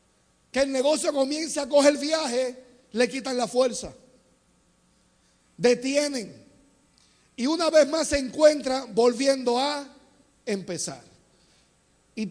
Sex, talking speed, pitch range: male, 110 wpm, 225-285 Hz